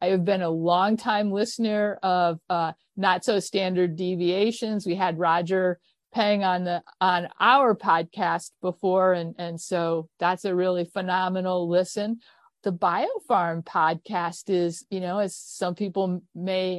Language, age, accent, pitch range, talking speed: English, 50-69, American, 180-235 Hz, 145 wpm